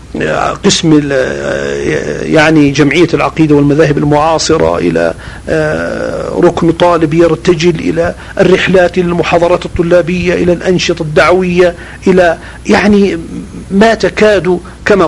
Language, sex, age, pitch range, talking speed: Arabic, male, 50-69, 130-175 Hz, 90 wpm